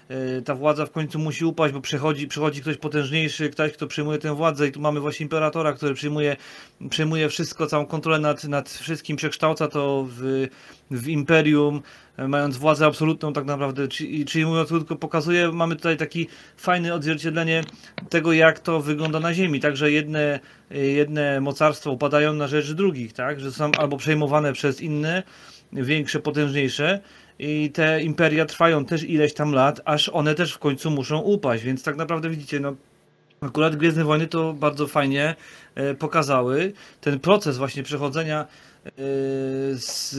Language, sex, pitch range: Polish, male, 140-160 Hz